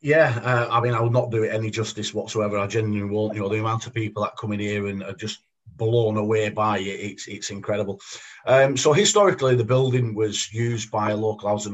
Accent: British